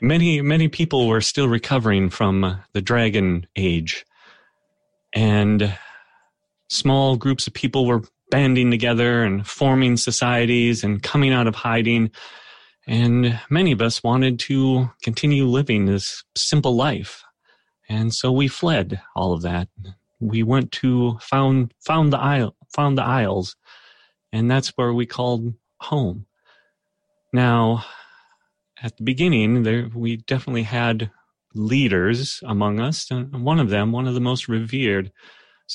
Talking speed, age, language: 135 wpm, 30-49, English